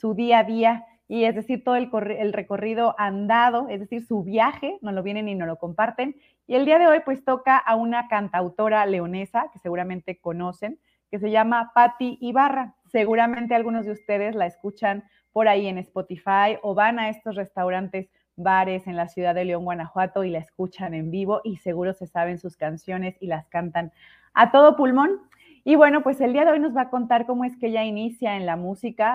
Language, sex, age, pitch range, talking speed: Spanish, female, 30-49, 185-240 Hz, 210 wpm